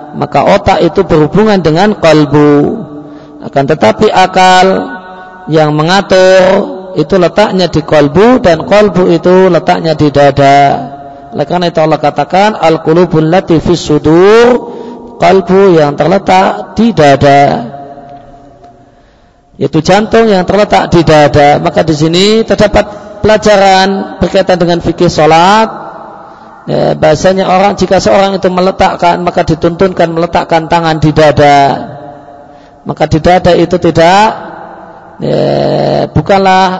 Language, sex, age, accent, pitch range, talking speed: Indonesian, male, 40-59, native, 150-185 Hz, 110 wpm